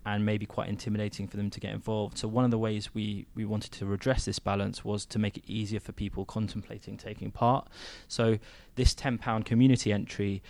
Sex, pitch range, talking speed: male, 100-110 Hz, 205 wpm